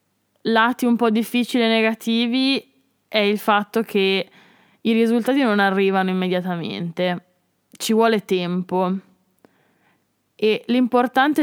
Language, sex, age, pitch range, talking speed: Italian, female, 20-39, 190-225 Hz, 105 wpm